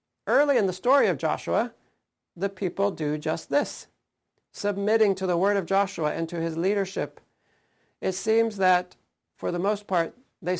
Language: English